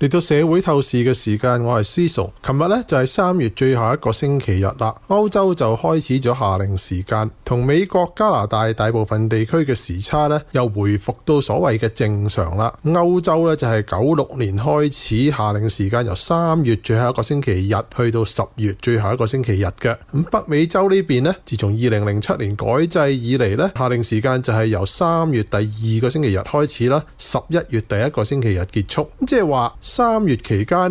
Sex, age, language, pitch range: male, 20-39, Chinese, 110-150 Hz